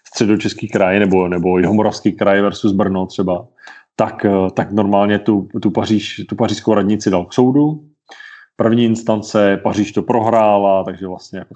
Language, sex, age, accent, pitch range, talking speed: Czech, male, 30-49, native, 105-120 Hz, 150 wpm